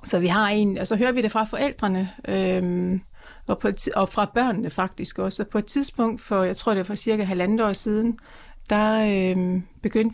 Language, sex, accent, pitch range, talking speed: Danish, female, native, 180-220 Hz, 215 wpm